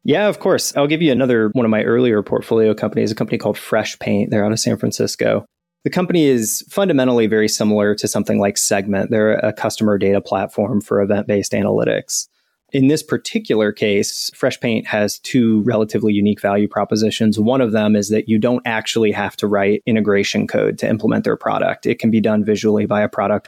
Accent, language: American, English